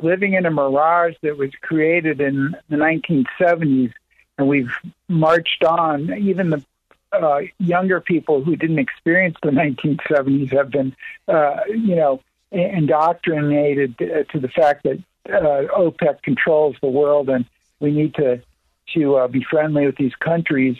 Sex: male